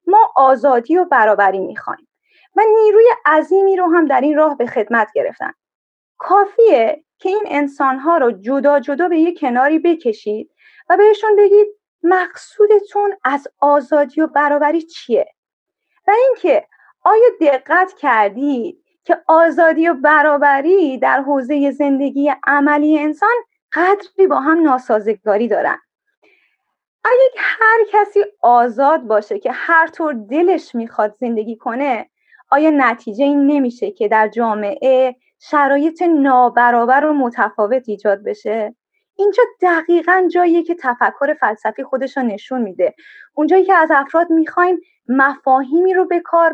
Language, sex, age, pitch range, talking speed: Persian, female, 30-49, 260-360 Hz, 125 wpm